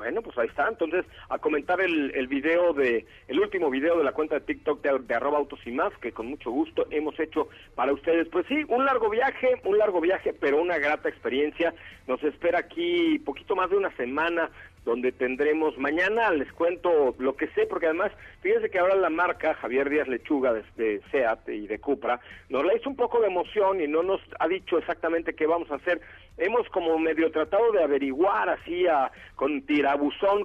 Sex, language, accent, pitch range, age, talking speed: male, Spanish, Mexican, 140-195 Hz, 50-69, 205 wpm